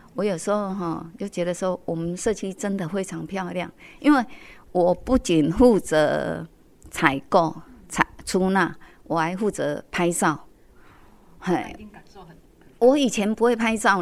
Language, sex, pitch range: Chinese, female, 170-230 Hz